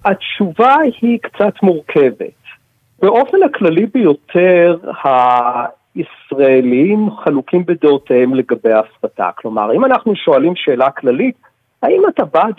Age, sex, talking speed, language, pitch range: 50-69, male, 100 wpm, Hebrew, 145-240 Hz